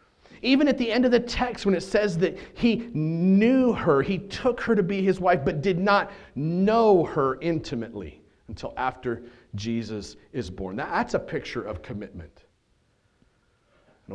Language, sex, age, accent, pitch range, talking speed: English, male, 40-59, American, 105-135 Hz, 160 wpm